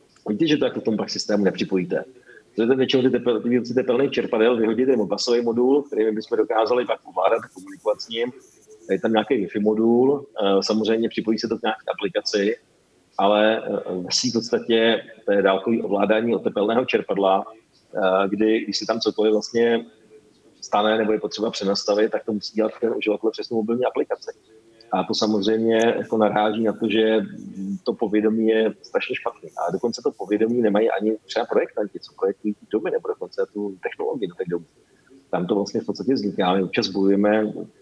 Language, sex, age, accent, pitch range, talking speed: Czech, male, 40-59, native, 100-115 Hz, 175 wpm